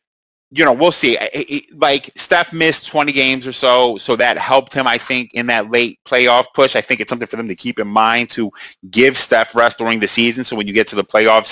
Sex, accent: male, American